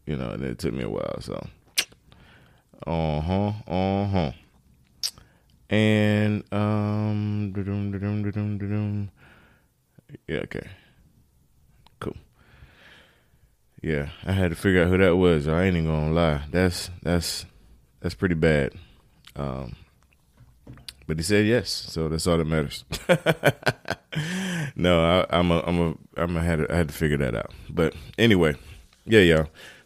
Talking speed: 155 wpm